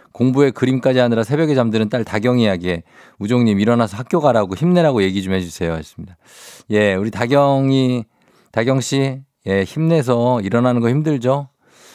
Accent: native